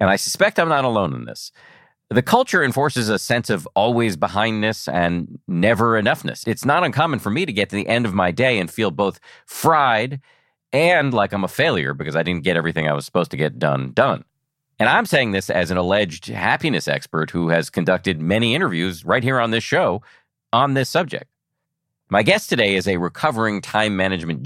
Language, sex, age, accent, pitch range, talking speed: English, male, 40-59, American, 95-140 Hz, 205 wpm